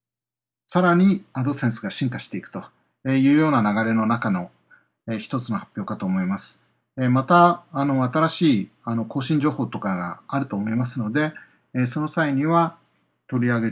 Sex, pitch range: male, 120-180 Hz